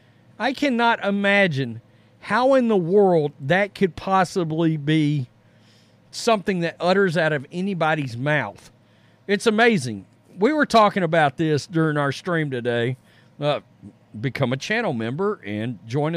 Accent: American